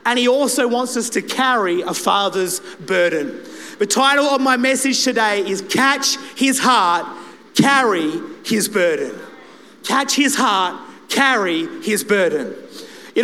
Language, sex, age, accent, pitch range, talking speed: English, male, 30-49, Australian, 215-255 Hz, 135 wpm